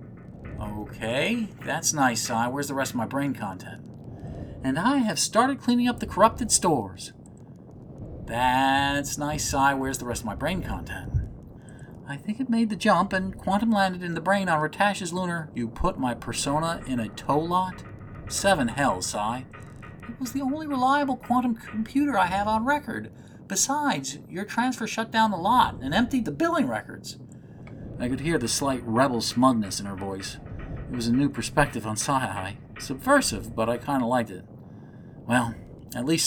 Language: English